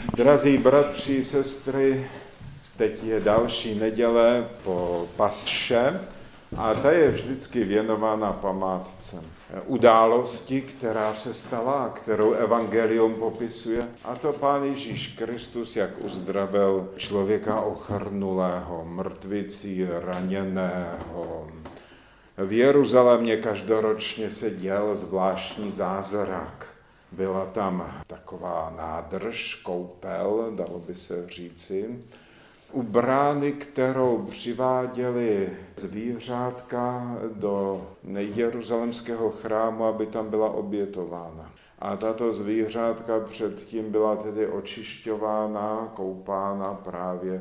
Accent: native